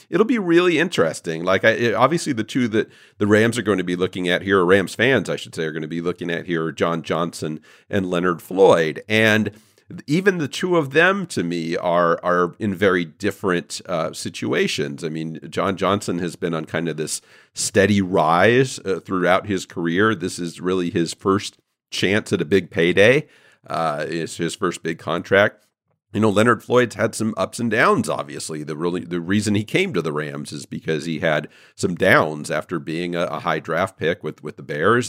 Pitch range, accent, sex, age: 85-115 Hz, American, male, 50-69